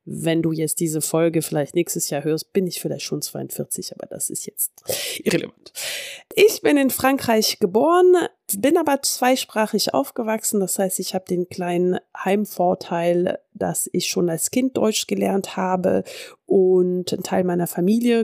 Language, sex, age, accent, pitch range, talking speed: German, female, 30-49, German, 175-225 Hz, 160 wpm